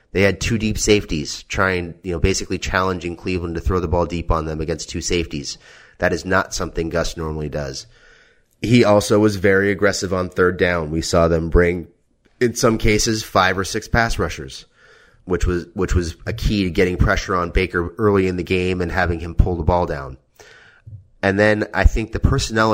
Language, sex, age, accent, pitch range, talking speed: English, male, 30-49, American, 85-100 Hz, 200 wpm